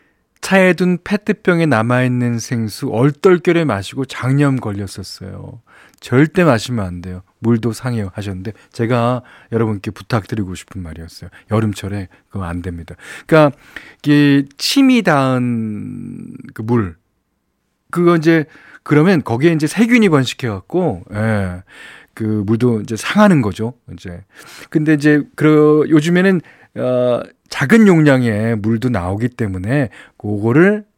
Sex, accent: male, native